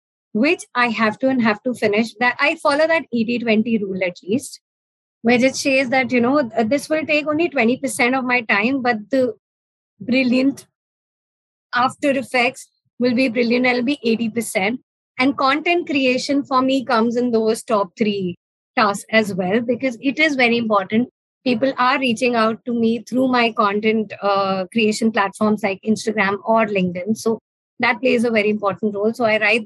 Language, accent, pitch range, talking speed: English, Indian, 215-255 Hz, 170 wpm